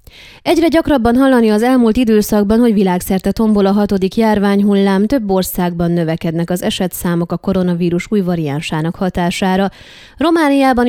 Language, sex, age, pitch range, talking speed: Hungarian, female, 20-39, 180-225 Hz, 125 wpm